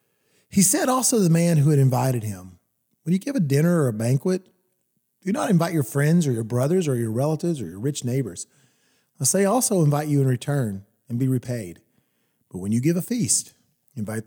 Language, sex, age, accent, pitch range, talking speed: English, male, 40-59, American, 120-175 Hz, 205 wpm